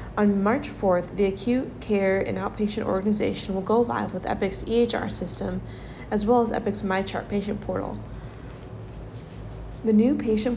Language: English